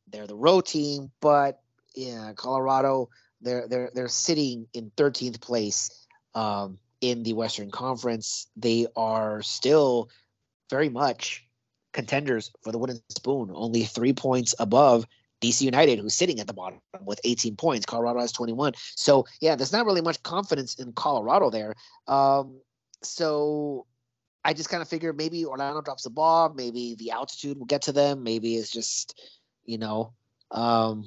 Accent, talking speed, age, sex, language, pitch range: American, 155 wpm, 30-49, male, English, 115-140 Hz